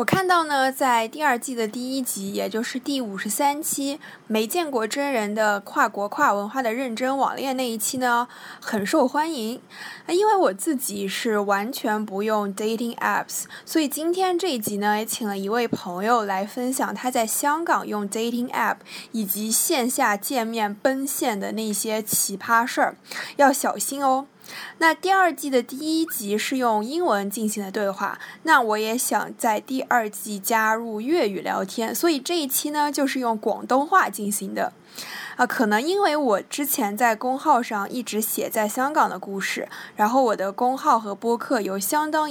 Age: 20-39